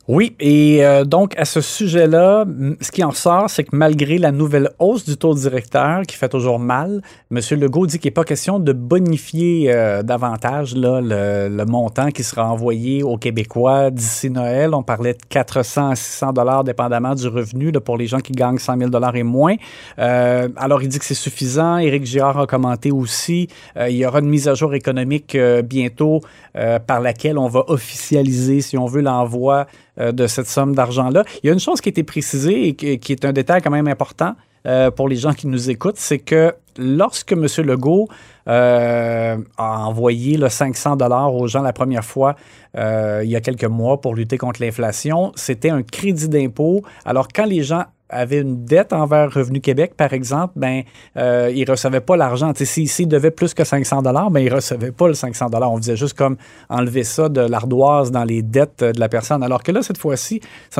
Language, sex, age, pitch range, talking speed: French, male, 30-49, 125-150 Hz, 205 wpm